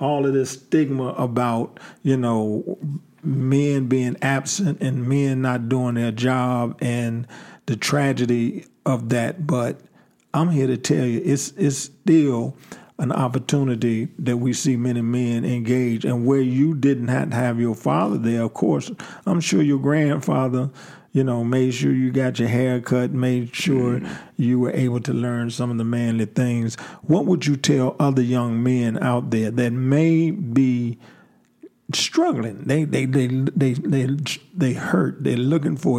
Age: 50-69